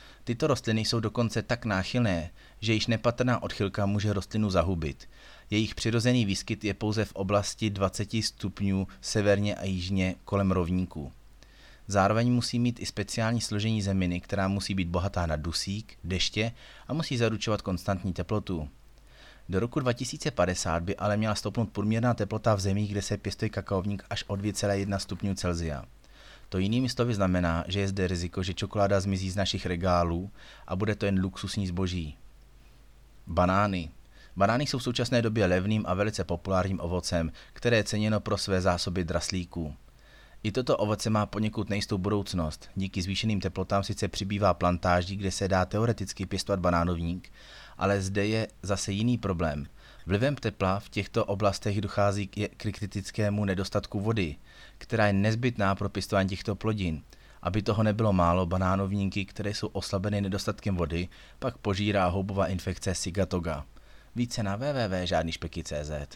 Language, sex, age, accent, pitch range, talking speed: Czech, male, 30-49, native, 95-110 Hz, 150 wpm